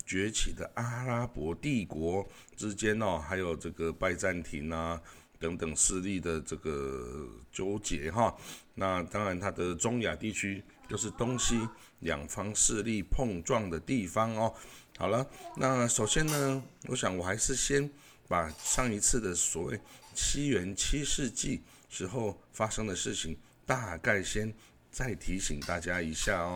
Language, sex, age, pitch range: Chinese, male, 60-79, 85-115 Hz